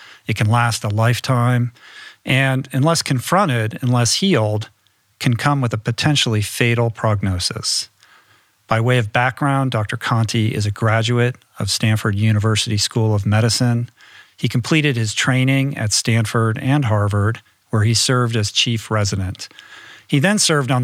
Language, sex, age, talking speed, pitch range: English, male, 50-69, 145 wpm, 110-130 Hz